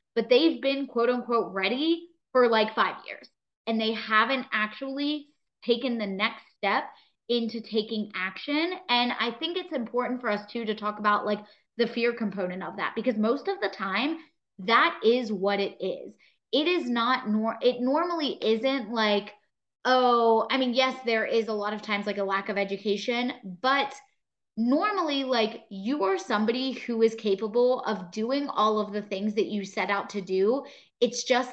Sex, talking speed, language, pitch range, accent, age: female, 180 wpm, English, 210-255 Hz, American, 20-39